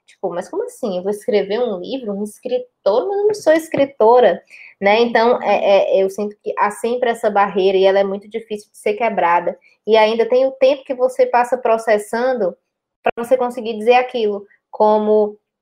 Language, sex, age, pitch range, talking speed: Portuguese, female, 20-39, 195-245 Hz, 190 wpm